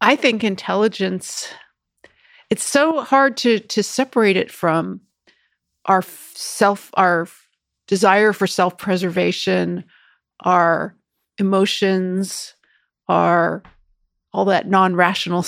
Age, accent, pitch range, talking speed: 40-59, American, 180-225 Hz, 95 wpm